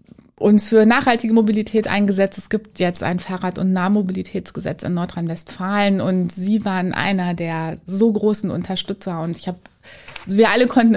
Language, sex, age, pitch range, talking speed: German, female, 20-39, 175-215 Hz, 155 wpm